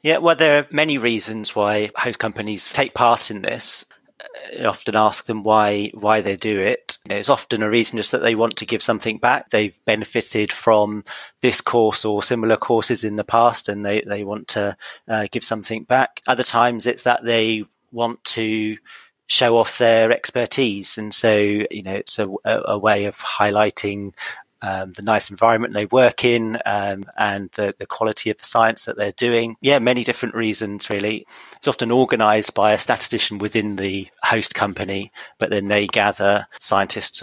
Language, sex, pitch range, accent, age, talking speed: English, male, 105-115 Hz, British, 30-49, 185 wpm